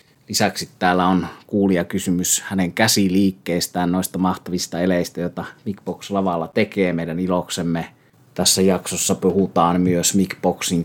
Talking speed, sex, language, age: 105 wpm, male, Finnish, 30-49